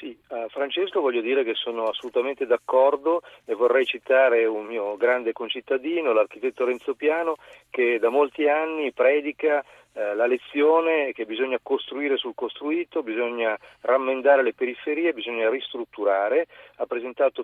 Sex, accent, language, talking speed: male, native, Italian, 140 wpm